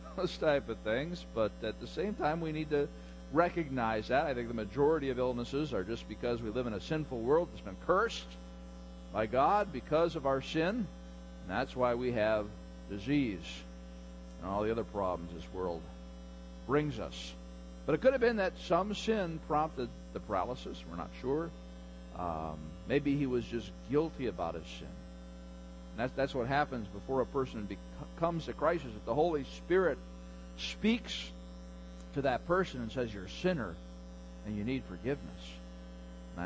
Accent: American